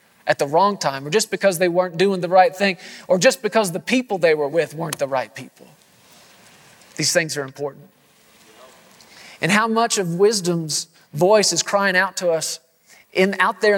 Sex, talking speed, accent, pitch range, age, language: male, 185 wpm, American, 175-220 Hz, 40-59, English